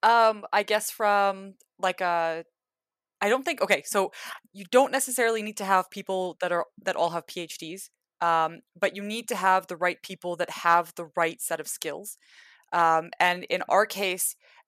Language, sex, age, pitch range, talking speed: English, female, 20-39, 170-190 Hz, 185 wpm